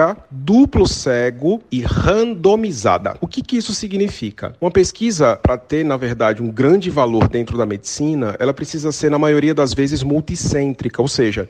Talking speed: 155 wpm